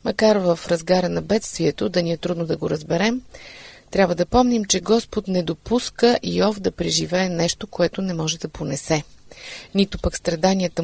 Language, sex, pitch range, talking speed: Bulgarian, female, 170-215 Hz, 170 wpm